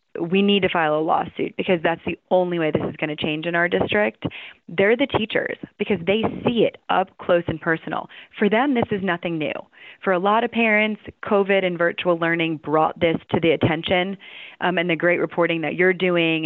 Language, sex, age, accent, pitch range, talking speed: English, female, 20-39, American, 155-195 Hz, 210 wpm